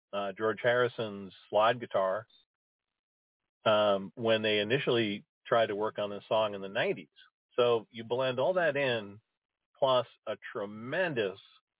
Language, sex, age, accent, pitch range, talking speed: English, male, 40-59, American, 100-125 Hz, 135 wpm